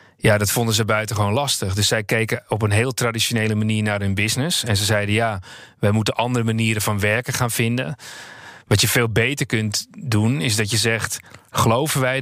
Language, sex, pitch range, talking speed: Dutch, male, 110-125 Hz, 200 wpm